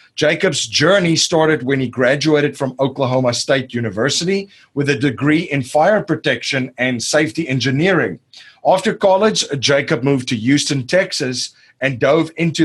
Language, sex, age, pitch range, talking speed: English, male, 40-59, 130-160 Hz, 140 wpm